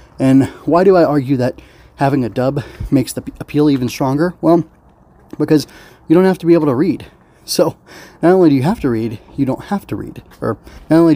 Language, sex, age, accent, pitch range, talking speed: English, male, 30-49, American, 115-150 Hz, 215 wpm